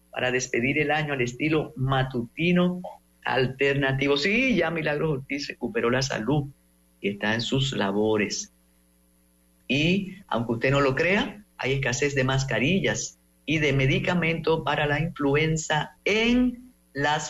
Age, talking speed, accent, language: 50-69, 130 wpm, American, English